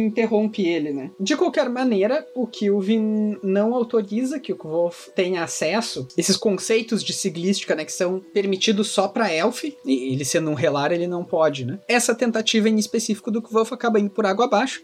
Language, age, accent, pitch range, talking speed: Portuguese, 20-39, Brazilian, 180-240 Hz, 190 wpm